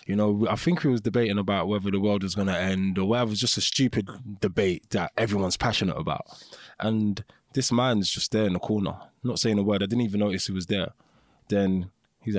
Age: 20-39